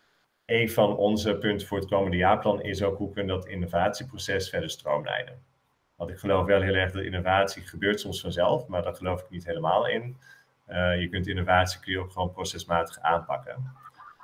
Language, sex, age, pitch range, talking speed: Dutch, male, 30-49, 85-105 Hz, 185 wpm